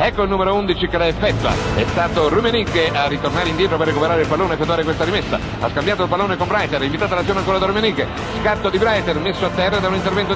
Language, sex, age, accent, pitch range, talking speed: Italian, male, 50-69, native, 210-260 Hz, 240 wpm